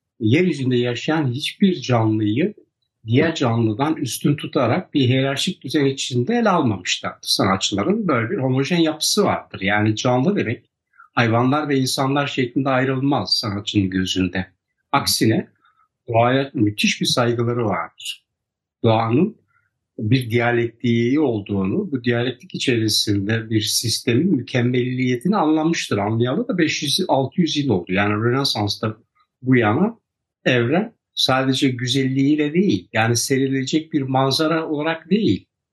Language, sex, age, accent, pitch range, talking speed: Turkish, male, 60-79, native, 120-155 Hz, 110 wpm